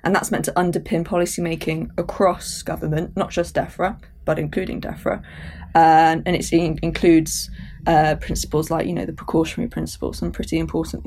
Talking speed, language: 165 wpm, English